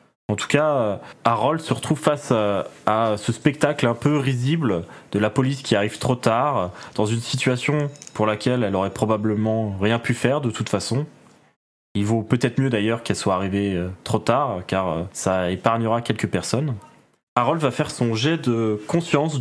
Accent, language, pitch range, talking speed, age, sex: French, French, 110-140 Hz, 175 wpm, 20-39, male